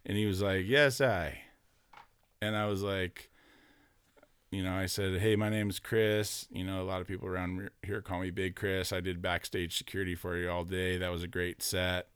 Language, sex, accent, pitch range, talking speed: English, male, American, 90-110 Hz, 215 wpm